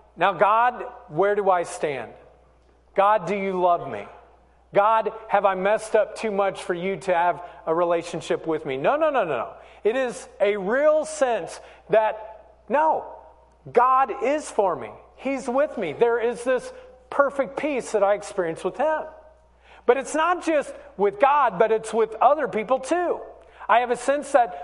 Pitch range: 185-245 Hz